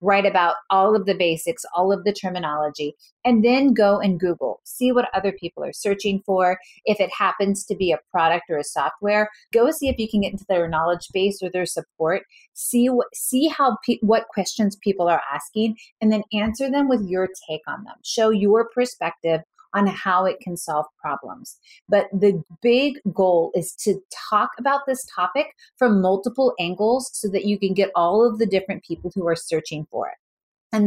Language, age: English, 30-49